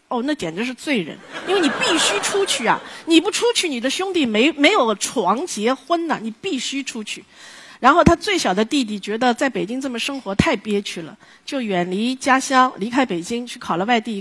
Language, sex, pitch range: Chinese, female, 225-330 Hz